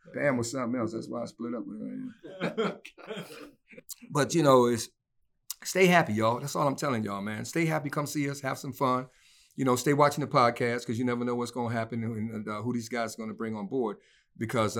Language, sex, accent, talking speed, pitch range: English, male, American, 235 wpm, 110-145 Hz